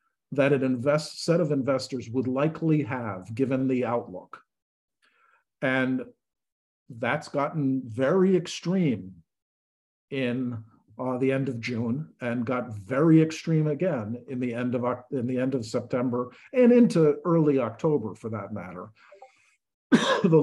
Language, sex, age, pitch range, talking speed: English, male, 50-69, 115-150 Hz, 130 wpm